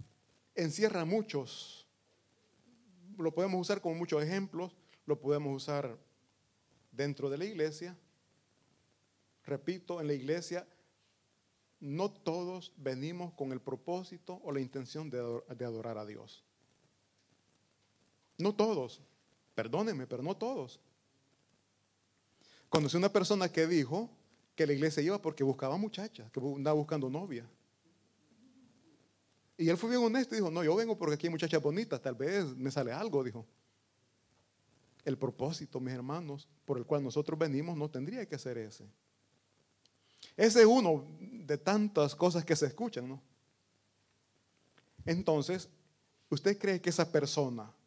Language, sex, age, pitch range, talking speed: Italian, male, 40-59, 130-175 Hz, 135 wpm